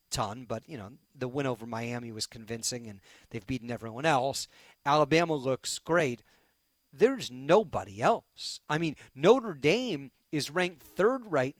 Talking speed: 150 wpm